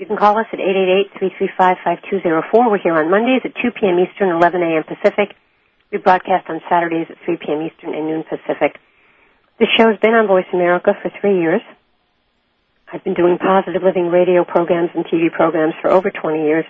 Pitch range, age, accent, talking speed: 155-195 Hz, 50-69, American, 185 wpm